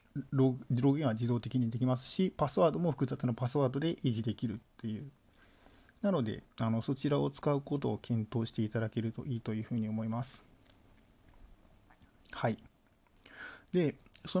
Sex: male